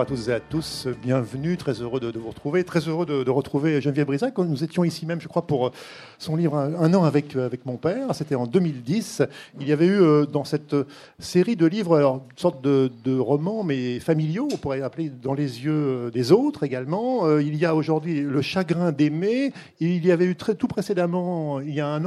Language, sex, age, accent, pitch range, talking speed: French, male, 50-69, French, 140-175 Hz, 225 wpm